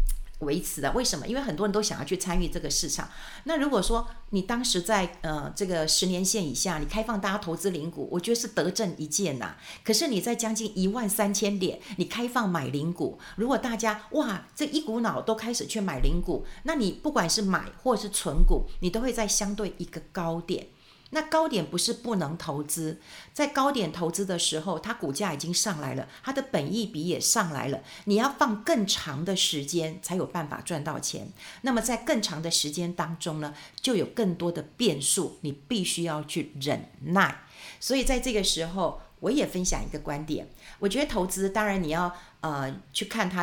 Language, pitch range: Chinese, 160-215 Hz